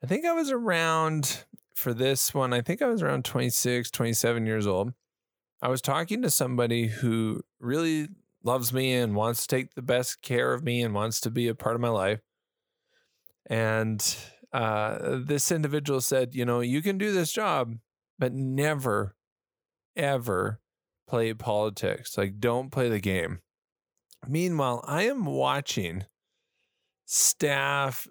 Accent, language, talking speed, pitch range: American, English, 150 wpm, 115-145 Hz